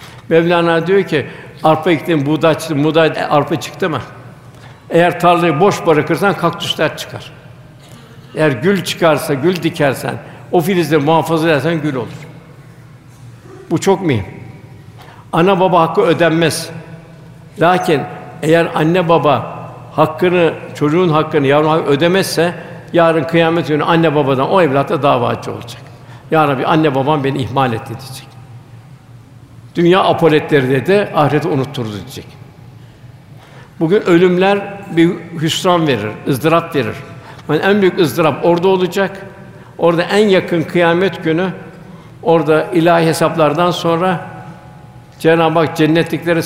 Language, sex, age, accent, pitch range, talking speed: Turkish, male, 60-79, native, 135-170 Hz, 120 wpm